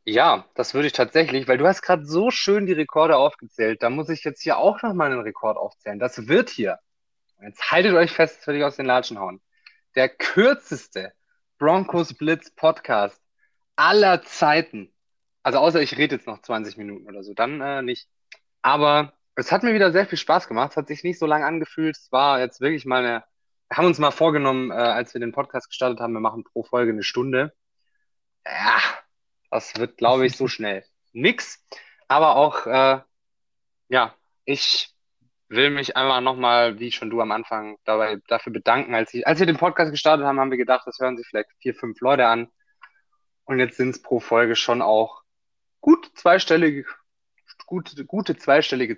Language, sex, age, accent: German, male, 20-39, German